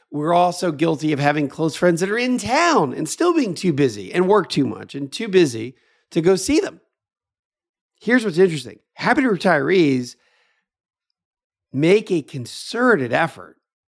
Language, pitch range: English, 125-180 Hz